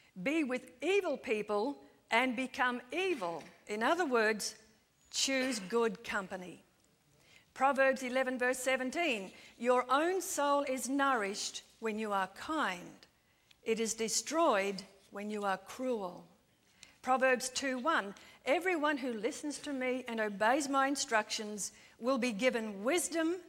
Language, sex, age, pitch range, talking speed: English, female, 50-69, 220-280 Hz, 125 wpm